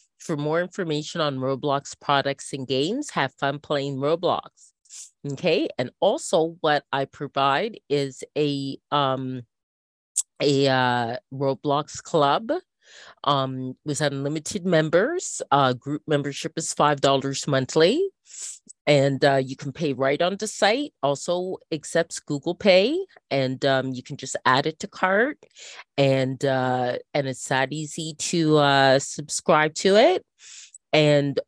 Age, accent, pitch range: 30-49, American, 130-160 Hz